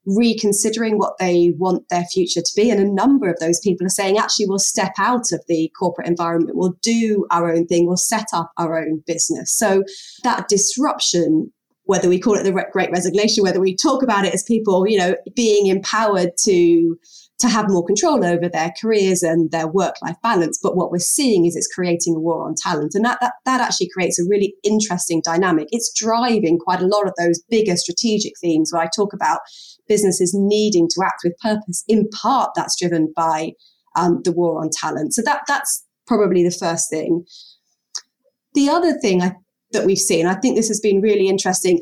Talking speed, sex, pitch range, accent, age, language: 200 wpm, female, 175-220 Hz, British, 20-39, English